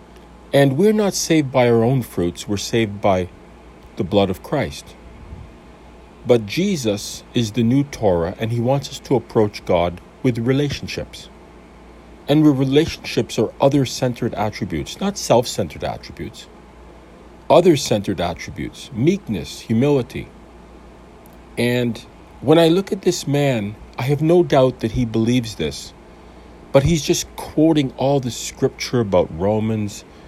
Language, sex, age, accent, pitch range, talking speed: English, male, 50-69, American, 90-145 Hz, 130 wpm